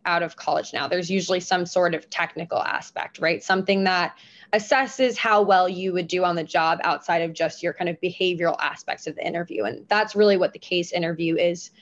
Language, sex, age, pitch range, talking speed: English, female, 20-39, 180-215 Hz, 215 wpm